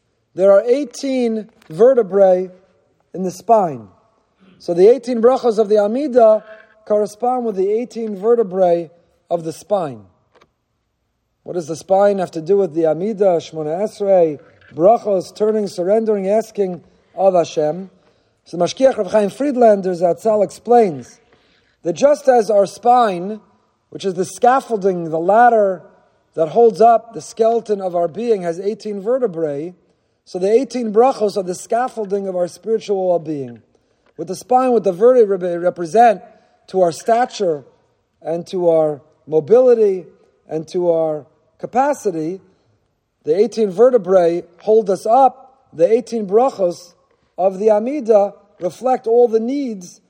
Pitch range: 180-235 Hz